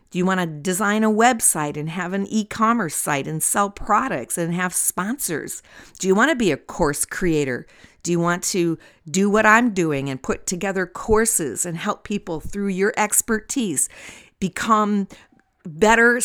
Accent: American